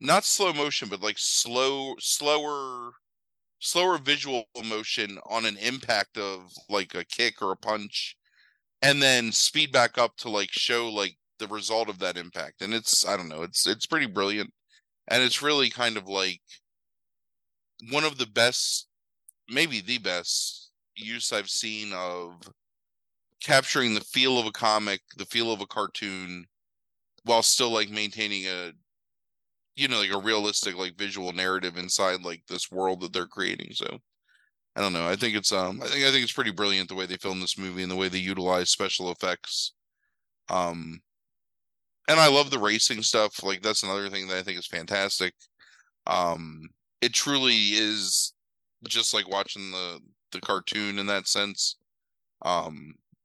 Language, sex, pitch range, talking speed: English, male, 95-120 Hz, 170 wpm